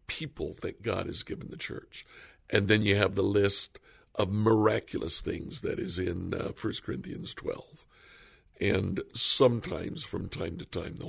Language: English